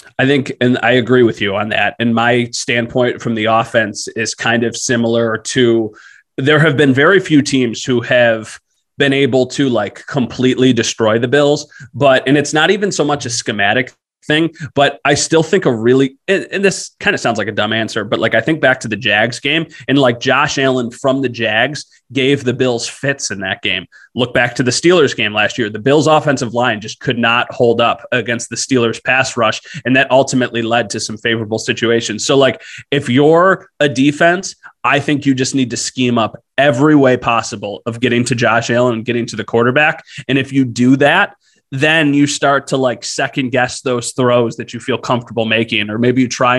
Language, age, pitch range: English, 30-49, 115-145 Hz